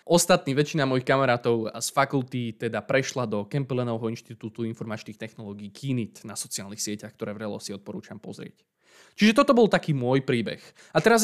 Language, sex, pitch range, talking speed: Slovak, male, 120-165 Hz, 165 wpm